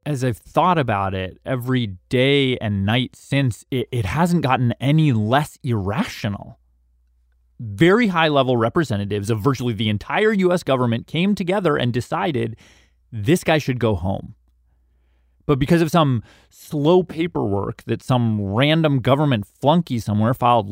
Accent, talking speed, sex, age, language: American, 140 wpm, male, 30-49, English